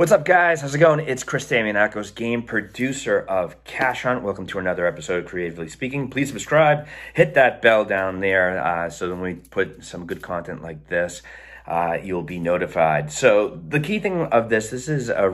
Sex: male